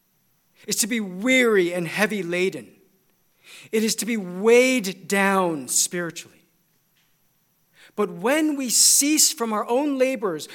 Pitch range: 190-255 Hz